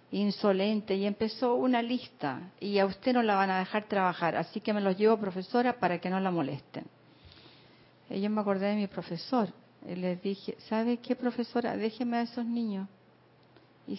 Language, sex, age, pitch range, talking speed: Spanish, female, 50-69, 195-245 Hz, 180 wpm